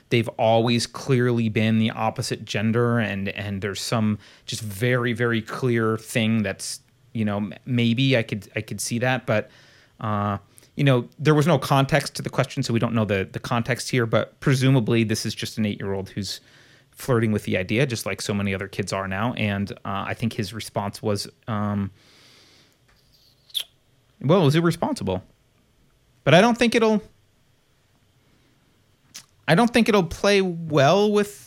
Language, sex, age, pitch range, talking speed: English, male, 30-49, 110-140 Hz, 175 wpm